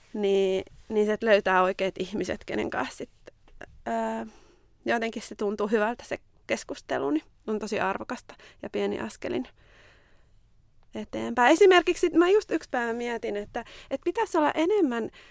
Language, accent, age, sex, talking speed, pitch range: Finnish, native, 20-39, female, 140 wpm, 195-250 Hz